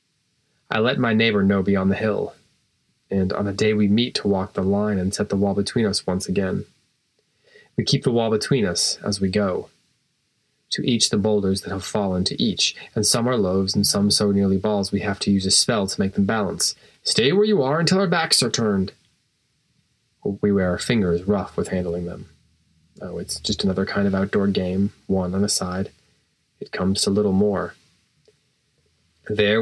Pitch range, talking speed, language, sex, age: 95-120 Hz, 200 wpm, English, male, 20-39